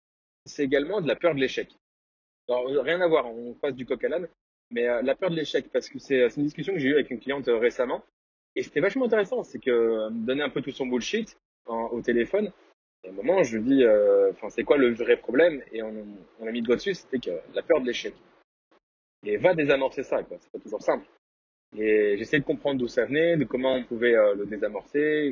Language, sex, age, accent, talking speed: French, male, 20-39, French, 245 wpm